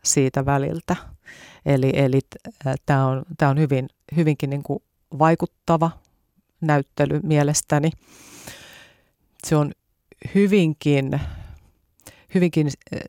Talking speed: 85 wpm